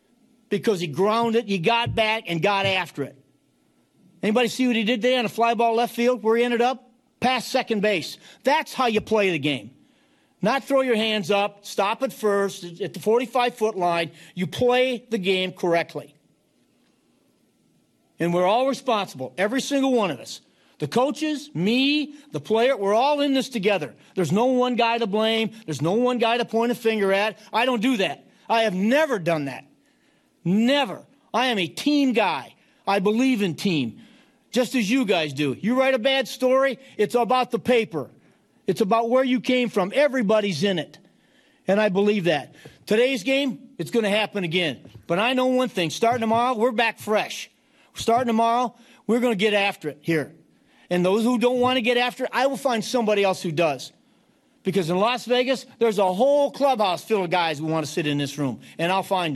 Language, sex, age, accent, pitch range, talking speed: English, male, 40-59, American, 190-250 Hz, 200 wpm